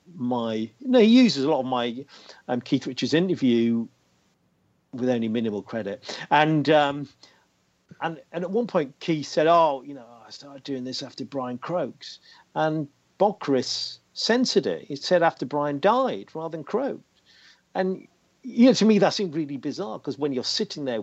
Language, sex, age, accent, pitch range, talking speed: English, male, 50-69, British, 115-160 Hz, 180 wpm